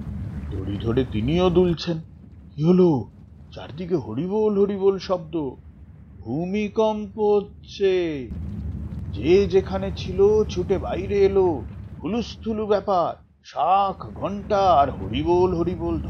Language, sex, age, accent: Bengali, male, 50-69, native